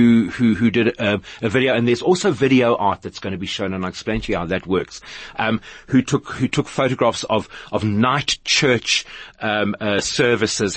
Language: English